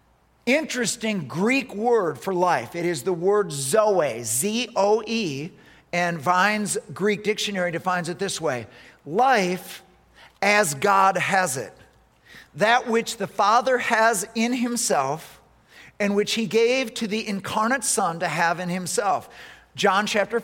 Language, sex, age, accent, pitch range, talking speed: English, male, 50-69, American, 185-255 Hz, 130 wpm